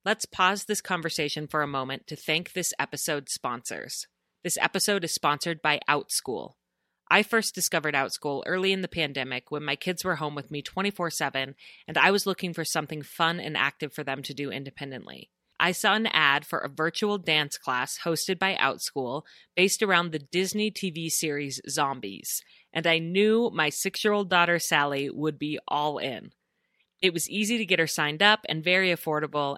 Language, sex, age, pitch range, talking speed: English, female, 30-49, 150-190 Hz, 180 wpm